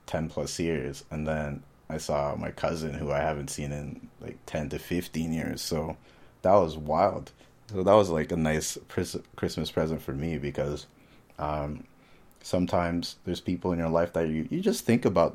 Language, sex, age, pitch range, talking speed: English, male, 30-49, 75-90 Hz, 185 wpm